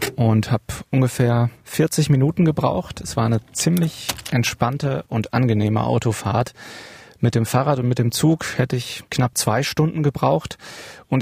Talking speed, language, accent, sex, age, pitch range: 150 wpm, German, German, male, 30-49, 115-135 Hz